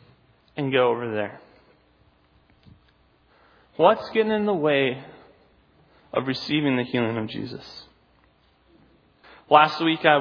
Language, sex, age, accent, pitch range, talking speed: English, male, 30-49, American, 115-145 Hz, 105 wpm